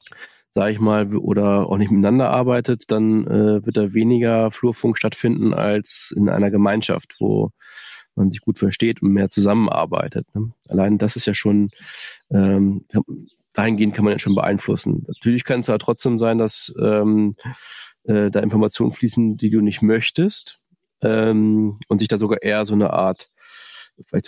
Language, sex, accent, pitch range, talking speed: German, male, German, 105-120 Hz, 165 wpm